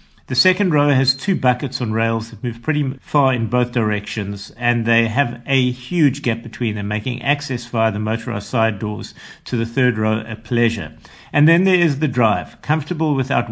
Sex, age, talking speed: male, 50-69, 195 wpm